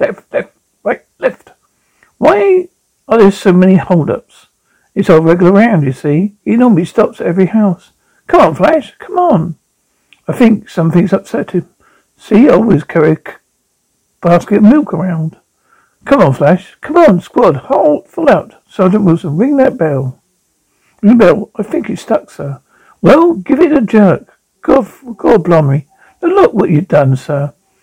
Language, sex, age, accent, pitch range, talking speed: English, male, 60-79, British, 170-245 Hz, 165 wpm